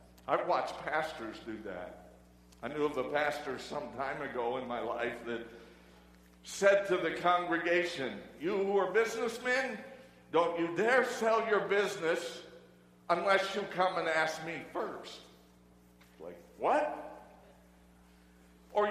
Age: 60-79